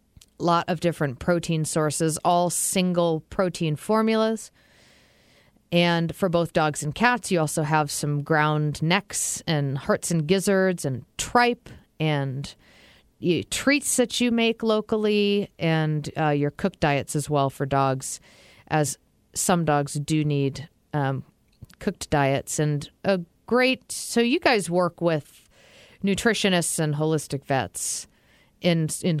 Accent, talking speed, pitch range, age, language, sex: American, 135 wpm, 150-185 Hz, 40-59, English, female